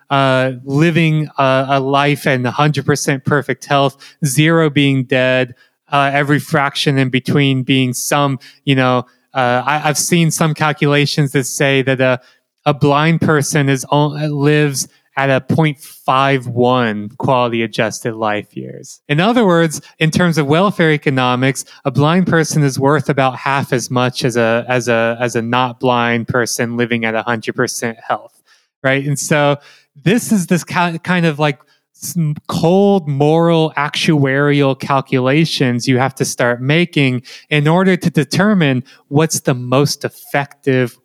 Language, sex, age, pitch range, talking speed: English, male, 20-39, 125-155 Hz, 145 wpm